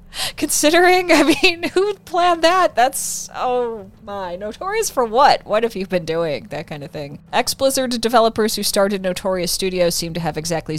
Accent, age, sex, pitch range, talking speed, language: American, 30-49, female, 165-220 Hz, 170 wpm, English